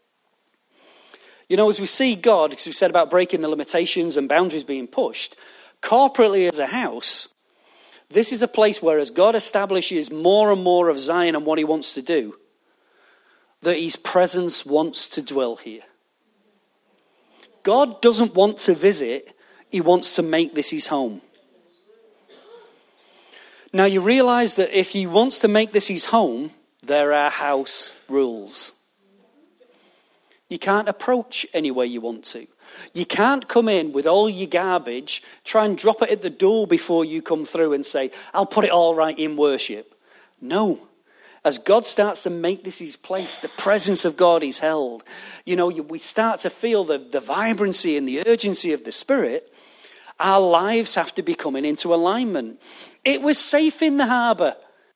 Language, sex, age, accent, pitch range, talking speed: English, male, 40-59, British, 165-235 Hz, 170 wpm